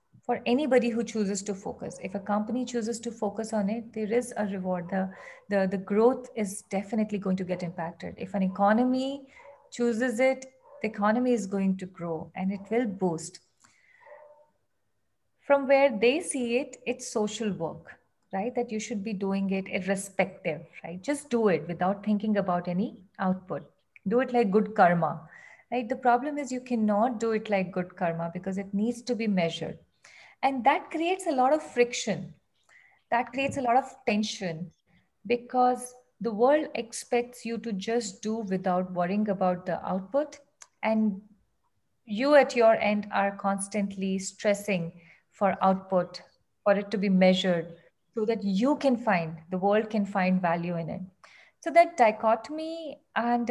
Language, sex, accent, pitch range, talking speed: English, female, Indian, 190-245 Hz, 165 wpm